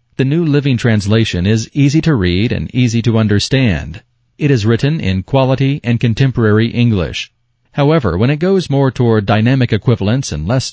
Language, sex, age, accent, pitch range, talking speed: English, male, 40-59, American, 110-130 Hz, 170 wpm